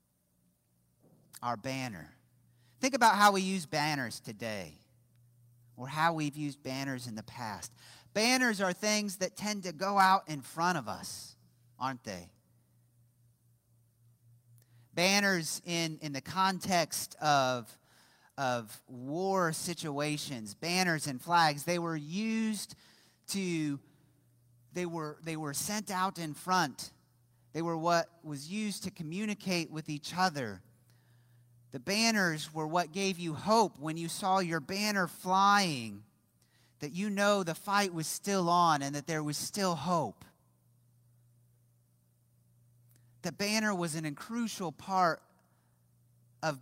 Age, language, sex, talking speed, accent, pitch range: 40-59, English, male, 125 wpm, American, 120-180 Hz